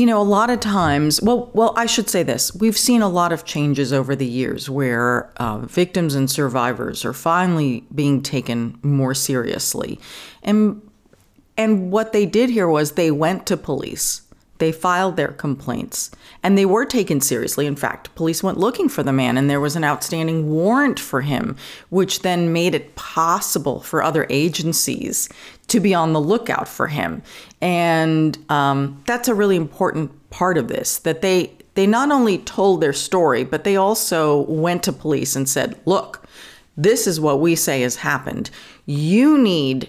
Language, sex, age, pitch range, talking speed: English, female, 40-59, 140-195 Hz, 180 wpm